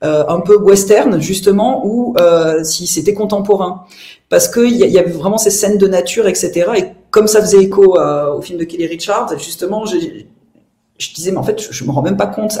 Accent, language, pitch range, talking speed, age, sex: French, French, 140-190 Hz, 215 wpm, 40-59, female